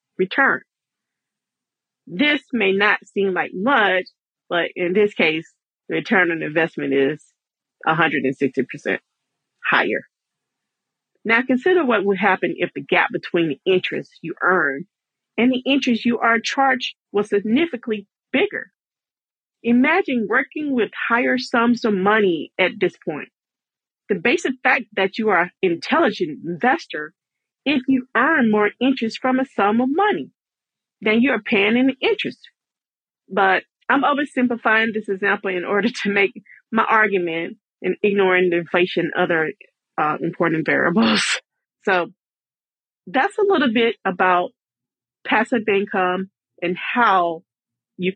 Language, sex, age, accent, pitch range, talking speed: English, female, 40-59, American, 180-255 Hz, 130 wpm